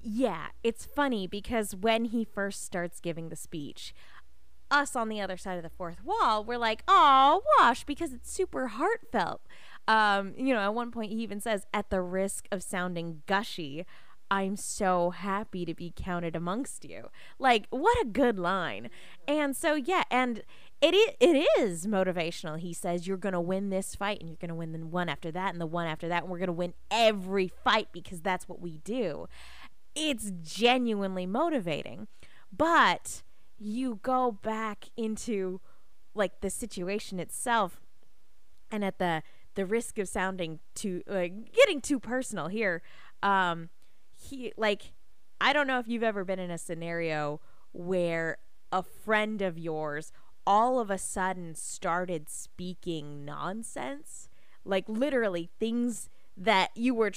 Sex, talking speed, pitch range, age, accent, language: female, 160 wpm, 175-240 Hz, 20-39, American, English